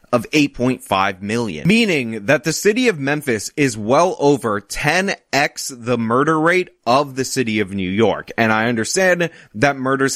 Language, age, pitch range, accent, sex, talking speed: English, 20-39, 105-150 Hz, American, male, 160 wpm